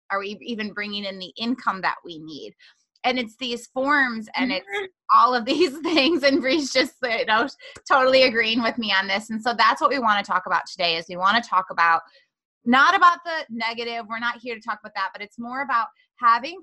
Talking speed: 220 wpm